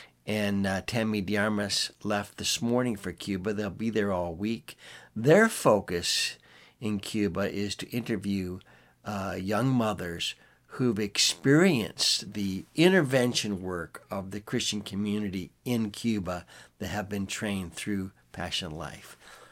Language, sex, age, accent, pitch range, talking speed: English, male, 60-79, American, 95-120 Hz, 130 wpm